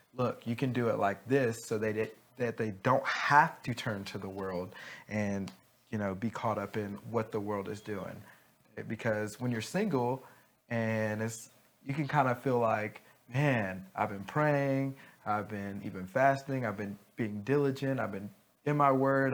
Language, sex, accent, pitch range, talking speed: English, male, American, 105-125 Hz, 185 wpm